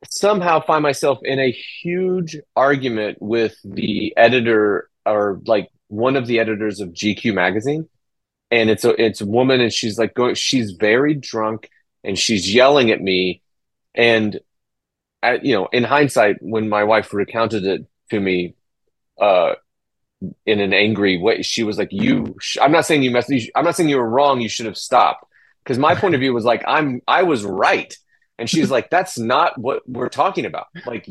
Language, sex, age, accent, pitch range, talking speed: English, male, 30-49, American, 105-130 Hz, 185 wpm